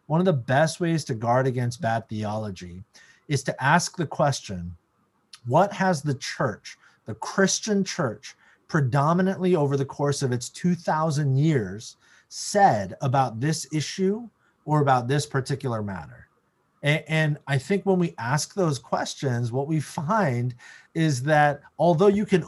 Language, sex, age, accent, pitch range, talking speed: English, male, 30-49, American, 120-160 Hz, 150 wpm